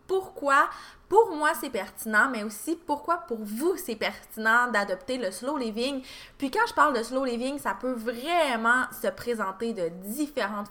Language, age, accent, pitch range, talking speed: French, 20-39, Canadian, 195-255 Hz, 170 wpm